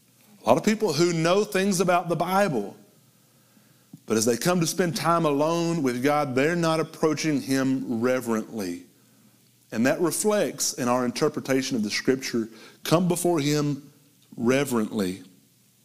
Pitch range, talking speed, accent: 115-165 Hz, 145 wpm, American